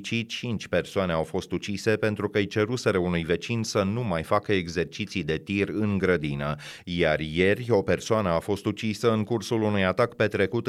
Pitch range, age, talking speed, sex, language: 90-110 Hz, 30-49, 175 wpm, male, Romanian